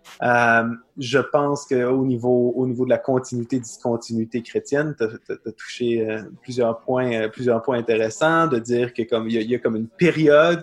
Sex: male